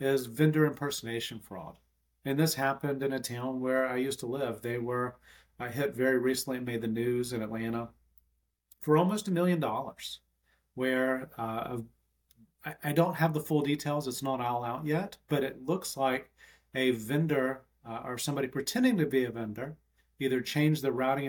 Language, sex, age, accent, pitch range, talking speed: English, male, 40-59, American, 115-145 Hz, 180 wpm